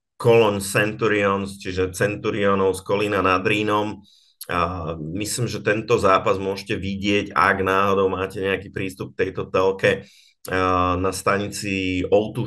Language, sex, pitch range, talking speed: Slovak, male, 95-105 Hz, 125 wpm